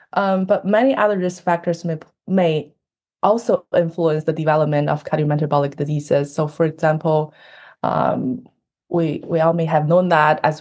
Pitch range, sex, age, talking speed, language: 155-180 Hz, female, 20-39, 155 wpm, English